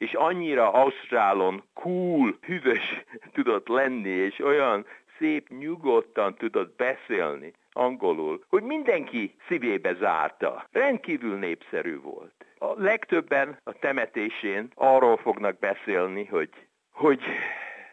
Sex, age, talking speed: male, 60-79, 100 wpm